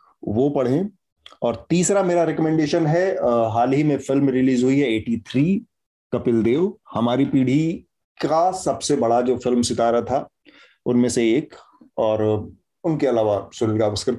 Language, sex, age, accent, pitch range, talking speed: Hindi, male, 30-49, native, 120-155 Hz, 150 wpm